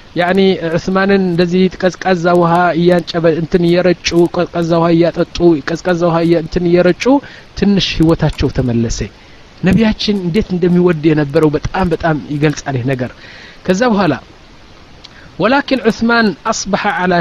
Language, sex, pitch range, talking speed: Amharic, male, 155-200 Hz, 80 wpm